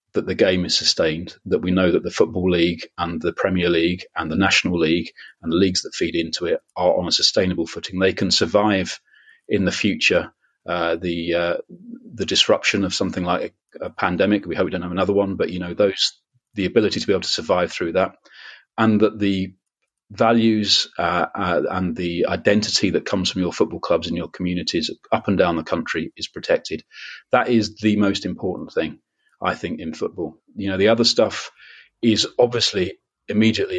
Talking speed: 200 wpm